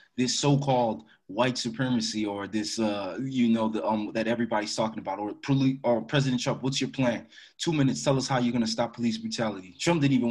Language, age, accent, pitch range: English, 20-39, American, 115-140 Hz